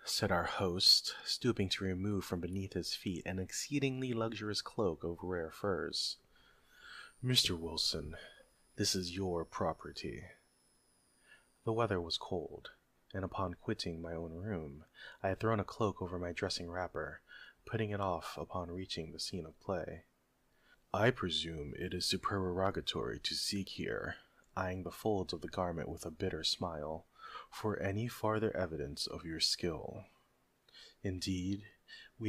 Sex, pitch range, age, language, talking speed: male, 85-100 Hz, 30-49, English, 145 wpm